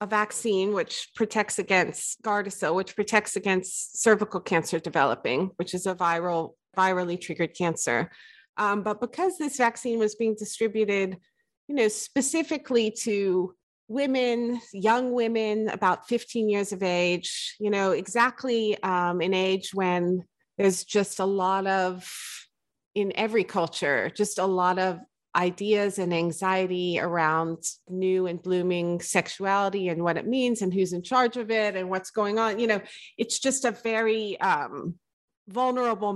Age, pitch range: 30-49, 175-215 Hz